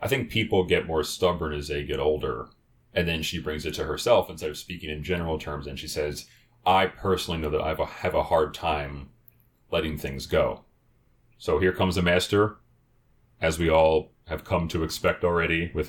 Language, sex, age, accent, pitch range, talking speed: English, male, 30-49, American, 75-95 Hz, 195 wpm